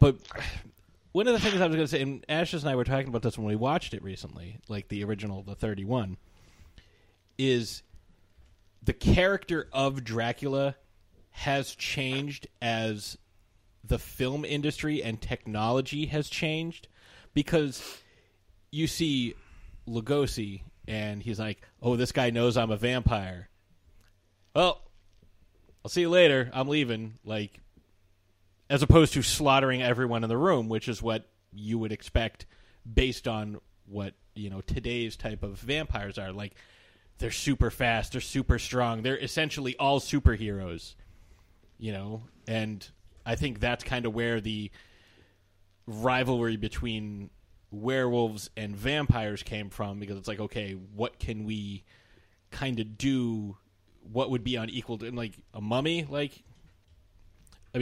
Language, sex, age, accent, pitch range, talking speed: English, male, 30-49, American, 100-125 Hz, 140 wpm